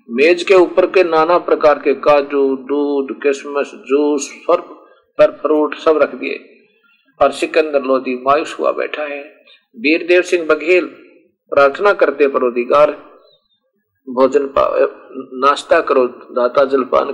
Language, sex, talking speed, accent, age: Hindi, male, 110 wpm, native, 50-69